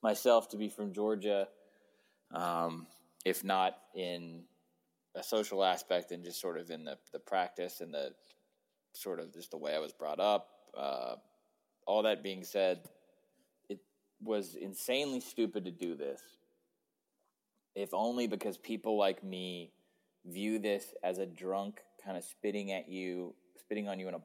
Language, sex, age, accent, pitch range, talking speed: English, male, 20-39, American, 85-100 Hz, 160 wpm